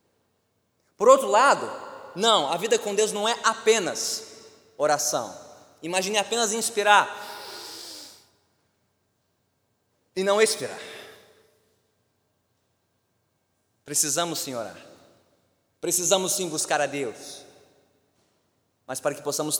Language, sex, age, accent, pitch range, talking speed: Portuguese, male, 20-39, Brazilian, 150-205 Hz, 90 wpm